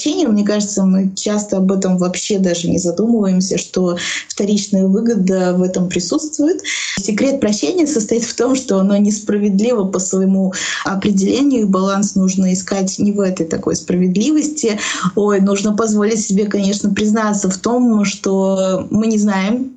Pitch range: 190-225 Hz